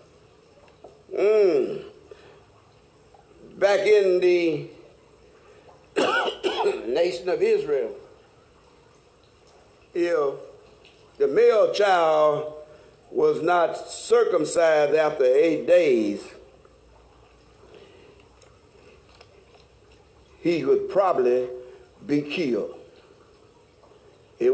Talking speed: 55 wpm